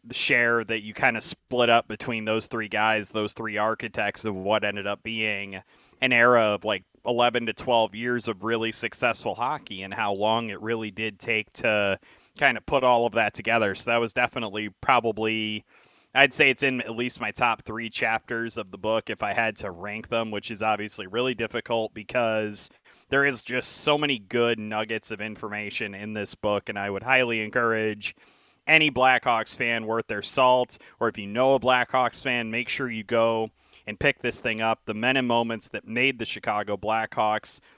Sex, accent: male, American